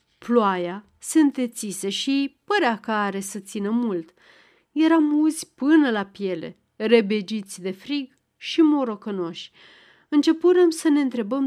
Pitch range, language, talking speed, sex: 200-285 Hz, Romanian, 125 wpm, female